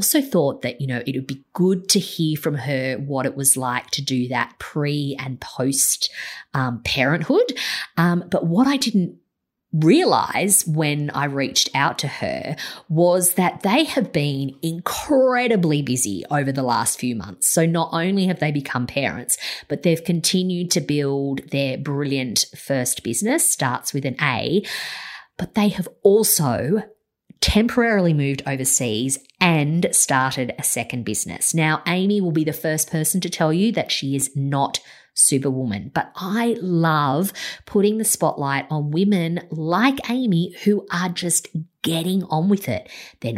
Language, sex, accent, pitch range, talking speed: English, female, Australian, 135-190 Hz, 155 wpm